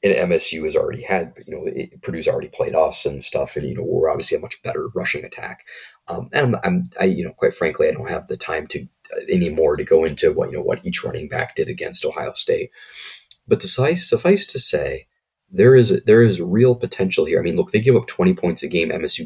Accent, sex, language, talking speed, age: American, male, English, 245 wpm, 30-49